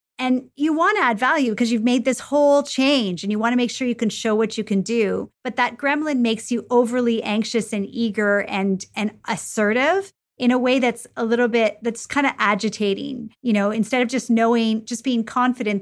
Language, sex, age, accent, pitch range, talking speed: English, female, 30-49, American, 210-255 Hz, 215 wpm